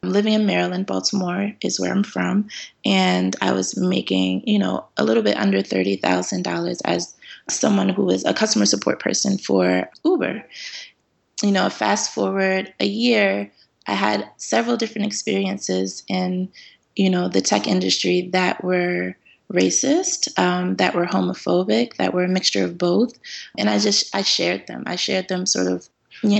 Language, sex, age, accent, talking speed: English, female, 20-39, American, 165 wpm